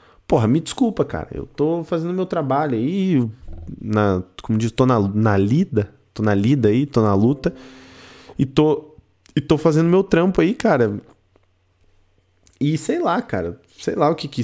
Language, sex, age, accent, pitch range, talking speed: Portuguese, male, 20-39, Brazilian, 95-135 Hz, 175 wpm